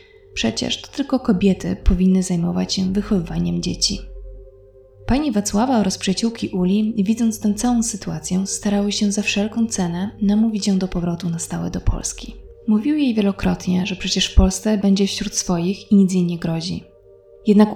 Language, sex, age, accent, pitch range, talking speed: Polish, female, 20-39, native, 185-210 Hz, 155 wpm